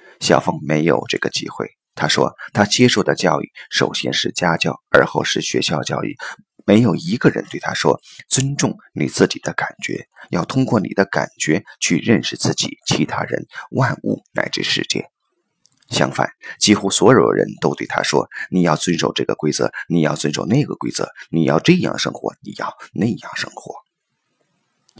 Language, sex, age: Chinese, male, 30-49